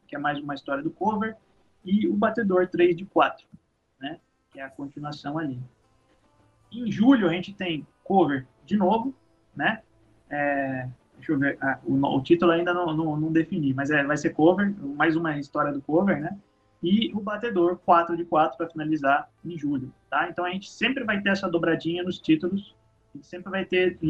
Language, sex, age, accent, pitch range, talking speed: Portuguese, male, 20-39, Brazilian, 145-185 Hz, 195 wpm